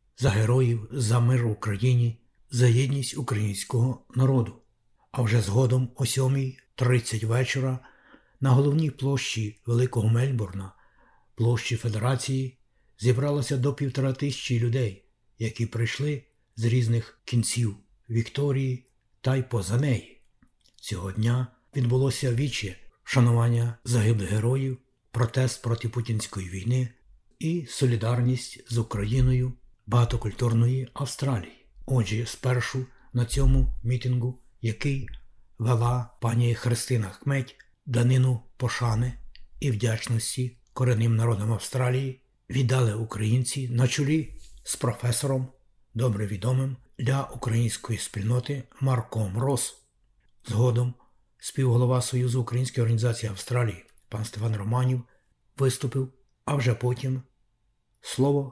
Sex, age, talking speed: male, 60-79, 100 wpm